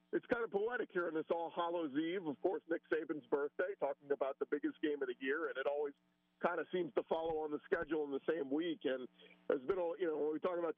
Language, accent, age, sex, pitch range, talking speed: English, American, 50-69, male, 145-175 Hz, 265 wpm